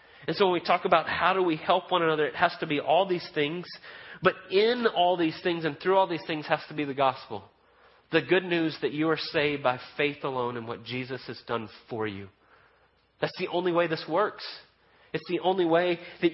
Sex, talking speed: male, 230 wpm